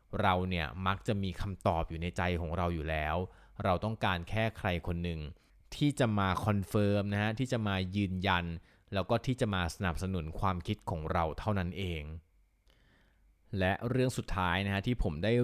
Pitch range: 85-105 Hz